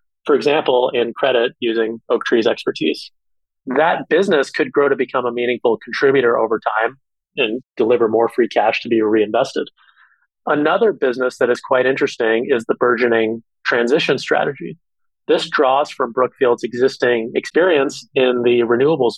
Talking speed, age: 145 wpm, 30-49